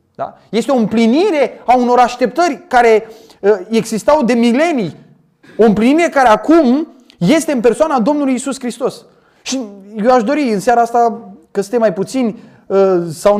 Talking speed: 145 wpm